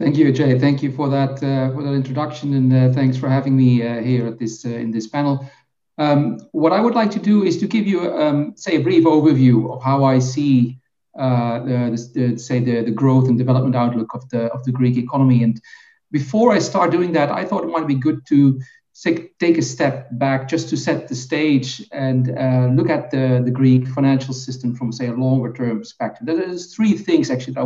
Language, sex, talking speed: English, male, 225 wpm